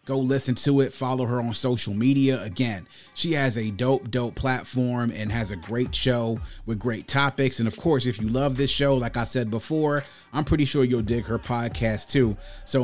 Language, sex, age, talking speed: English, male, 30-49, 210 wpm